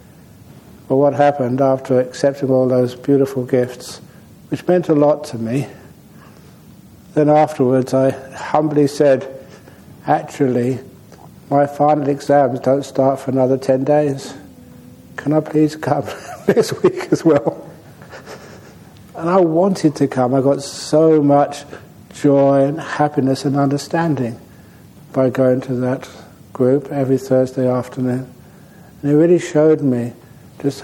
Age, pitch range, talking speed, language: 60-79, 130-145 Hz, 130 wpm, English